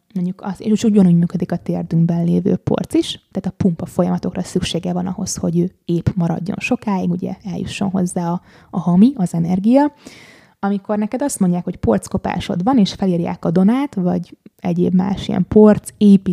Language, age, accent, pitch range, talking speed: English, 20-39, Finnish, 180-200 Hz, 160 wpm